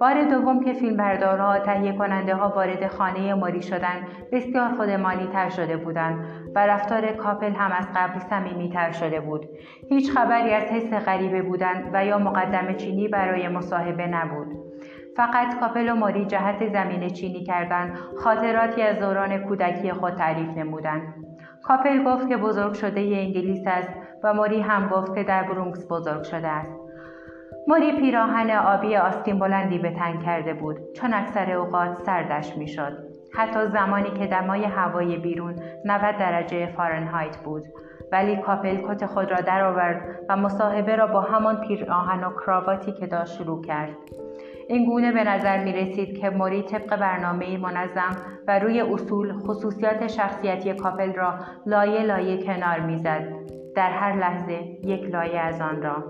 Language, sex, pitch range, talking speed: Persian, female, 175-205 Hz, 155 wpm